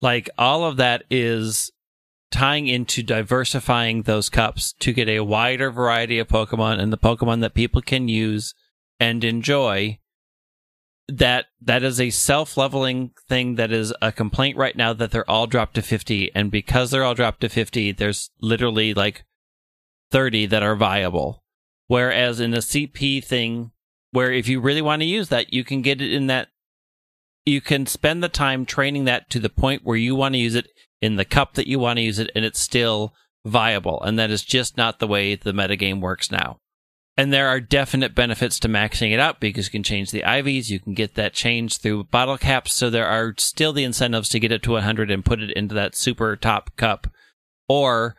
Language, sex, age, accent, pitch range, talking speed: English, male, 30-49, American, 110-130 Hz, 200 wpm